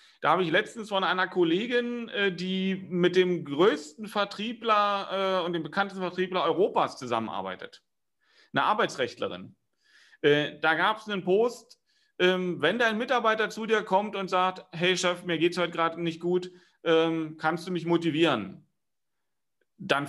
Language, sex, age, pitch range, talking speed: German, male, 40-59, 160-200 Hz, 135 wpm